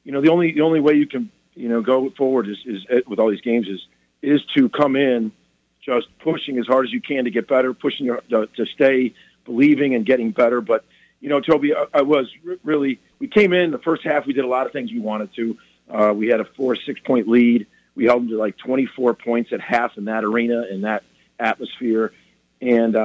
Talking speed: 230 wpm